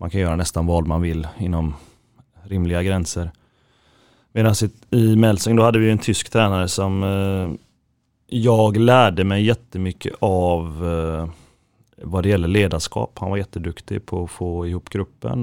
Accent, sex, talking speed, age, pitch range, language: native, male, 150 wpm, 30-49, 90-110 Hz, Swedish